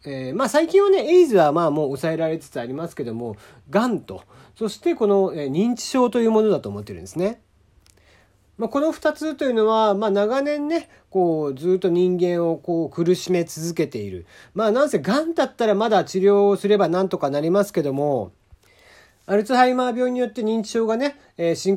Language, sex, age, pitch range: Japanese, male, 40-59, 135-215 Hz